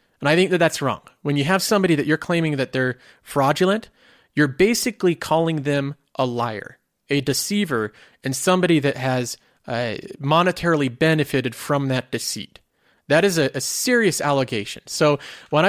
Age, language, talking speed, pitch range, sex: 30-49, English, 160 wpm, 130-170 Hz, male